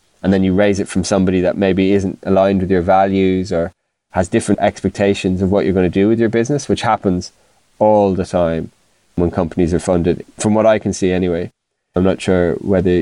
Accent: Irish